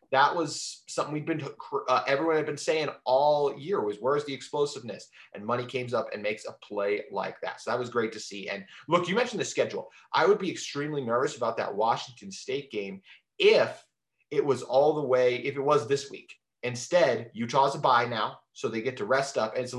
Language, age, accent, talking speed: English, 30-49, American, 220 wpm